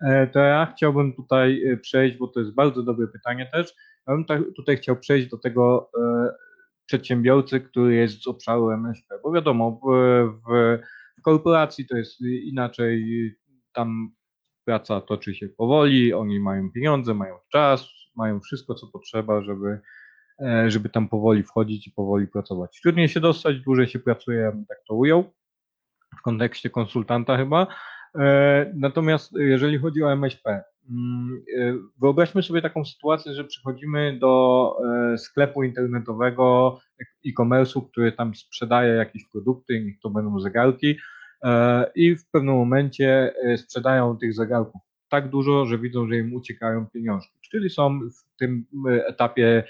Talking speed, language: 135 wpm, Polish